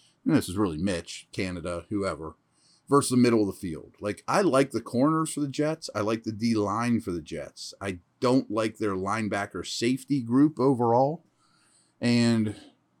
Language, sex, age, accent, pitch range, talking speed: English, male, 30-49, American, 95-130 Hz, 165 wpm